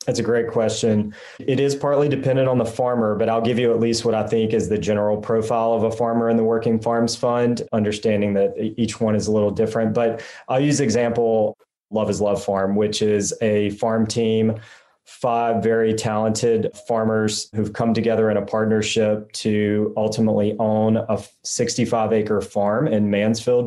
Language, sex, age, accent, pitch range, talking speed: English, male, 20-39, American, 110-120 Hz, 185 wpm